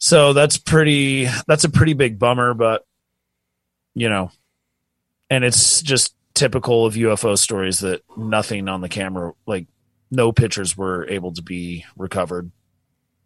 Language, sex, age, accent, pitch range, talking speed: English, male, 30-49, American, 95-135 Hz, 140 wpm